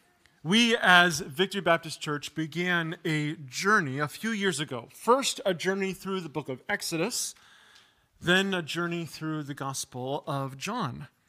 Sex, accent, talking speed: male, American, 150 wpm